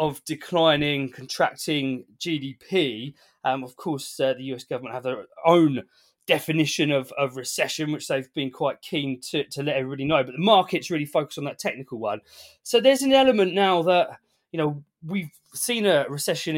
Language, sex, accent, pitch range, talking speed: English, male, British, 140-185 Hz, 175 wpm